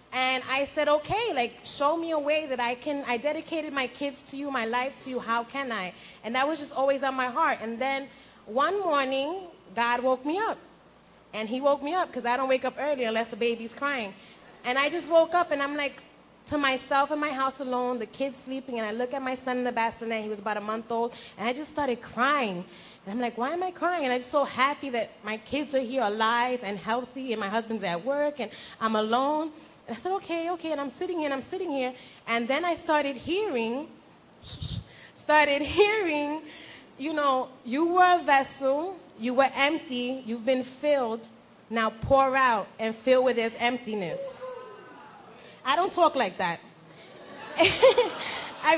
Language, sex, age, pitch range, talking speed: English, female, 20-39, 240-300 Hz, 205 wpm